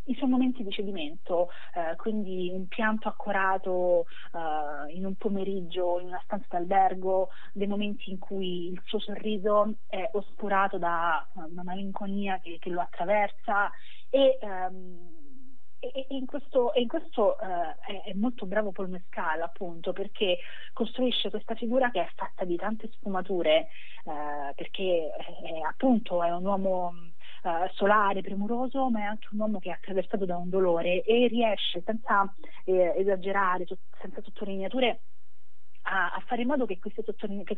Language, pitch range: Italian, 180-225 Hz